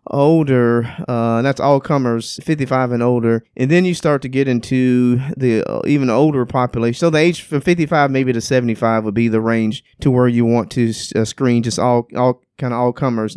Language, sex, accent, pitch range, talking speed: English, male, American, 120-140 Hz, 200 wpm